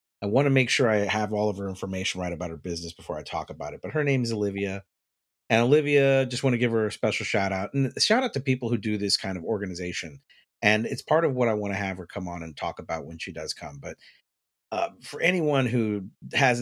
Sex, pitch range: male, 90-110 Hz